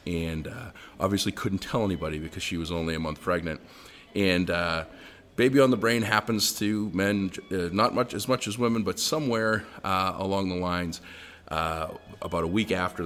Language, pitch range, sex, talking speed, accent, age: English, 80-95 Hz, male, 185 wpm, American, 30-49